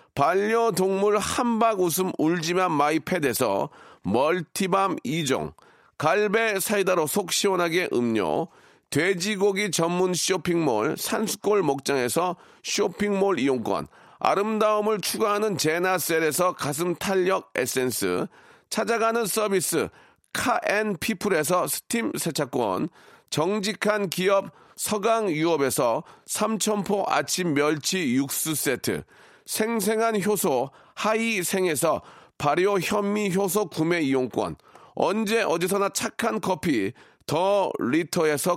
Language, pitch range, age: Korean, 165-215 Hz, 40-59